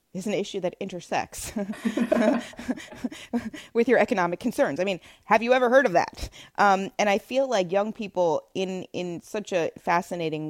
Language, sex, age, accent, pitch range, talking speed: English, female, 20-39, American, 150-195 Hz, 165 wpm